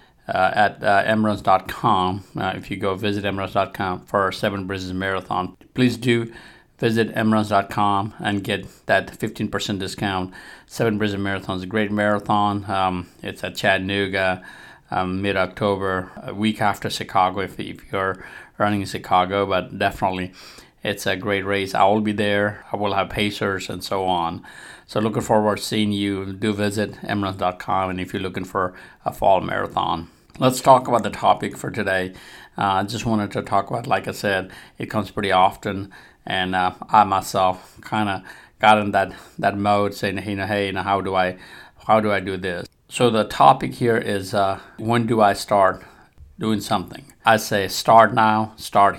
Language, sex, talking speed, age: English, male, 180 wpm, 30-49